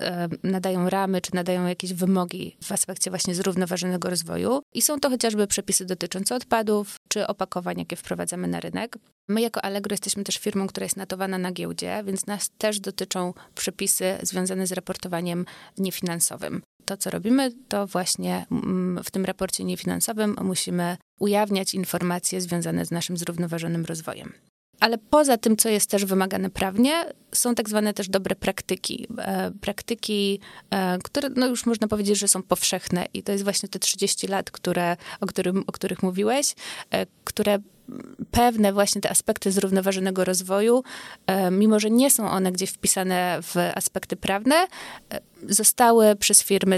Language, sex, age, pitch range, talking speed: Polish, female, 20-39, 180-210 Hz, 145 wpm